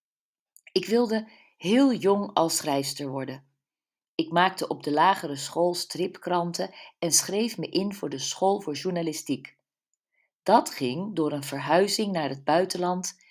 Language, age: Dutch, 50-69